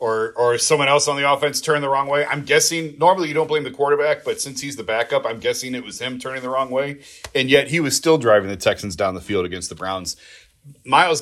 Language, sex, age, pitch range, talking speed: English, male, 30-49, 115-155 Hz, 255 wpm